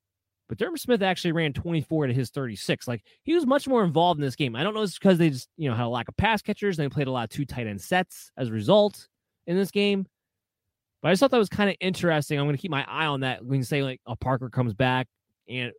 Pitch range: 110-145 Hz